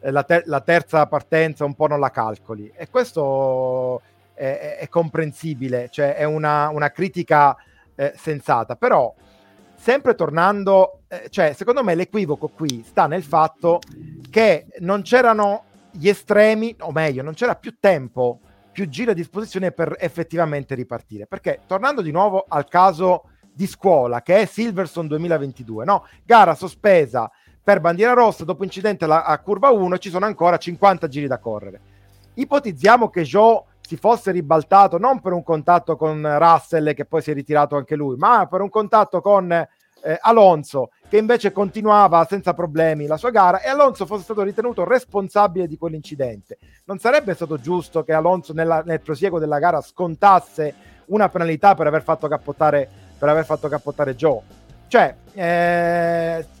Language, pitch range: Italian, 150-200 Hz